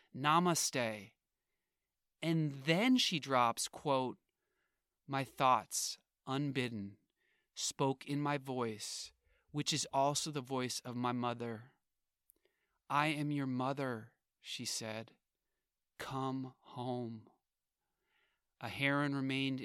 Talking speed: 100 wpm